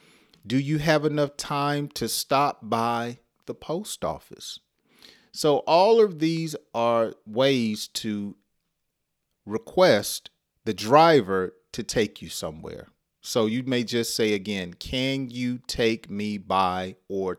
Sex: male